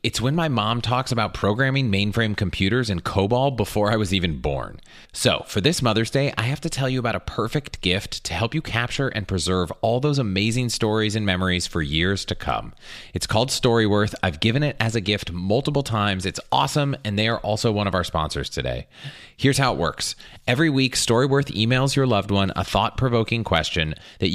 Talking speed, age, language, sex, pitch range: 205 wpm, 30-49, English, male, 95-130 Hz